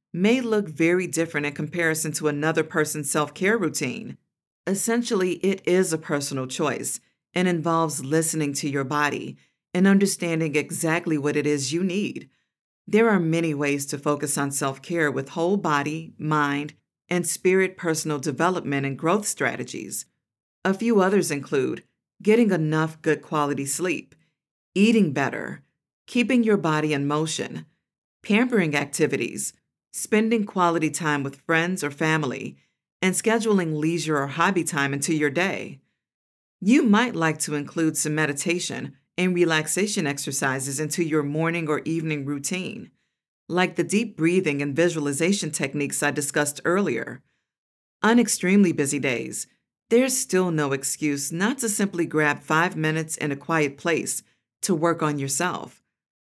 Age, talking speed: 50-69, 140 wpm